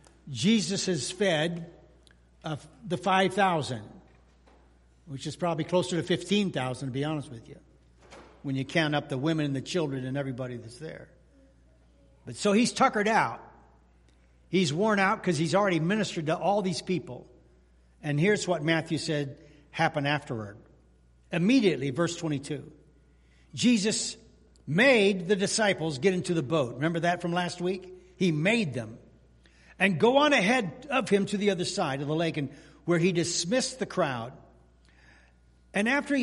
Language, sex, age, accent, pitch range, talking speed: English, male, 60-79, American, 125-195 Hz, 155 wpm